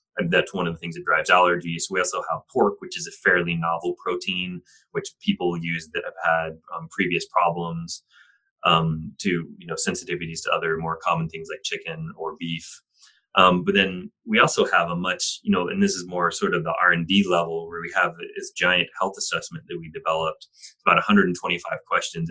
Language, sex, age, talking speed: English, male, 30-49, 200 wpm